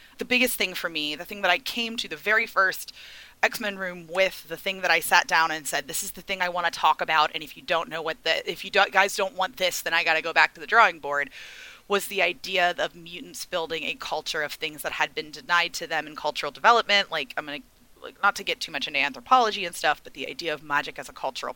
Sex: female